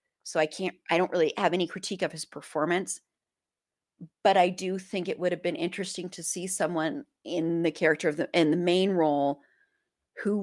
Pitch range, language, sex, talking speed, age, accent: 160-200 Hz, English, female, 195 wpm, 30-49, American